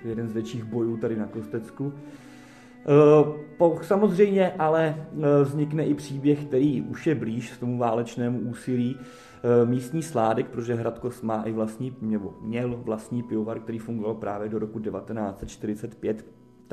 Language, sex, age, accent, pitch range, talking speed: Czech, male, 30-49, native, 115-130 Hz, 120 wpm